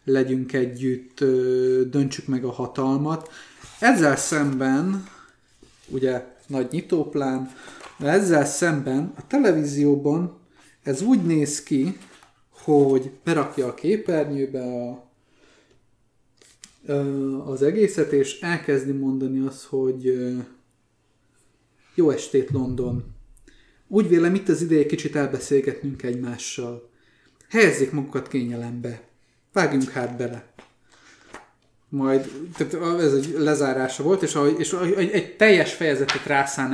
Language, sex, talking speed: Hungarian, male, 100 wpm